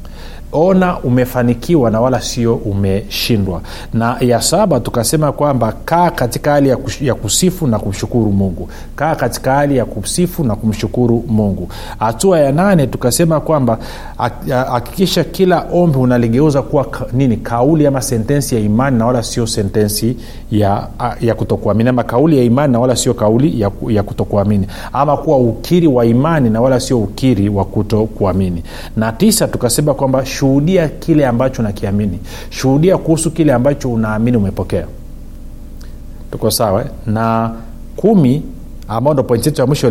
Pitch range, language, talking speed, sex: 105-140 Hz, Swahili, 140 wpm, male